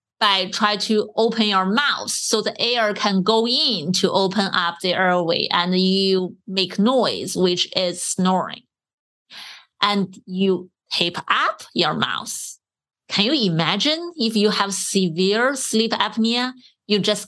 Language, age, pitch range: English, 30-49, 185-225 Hz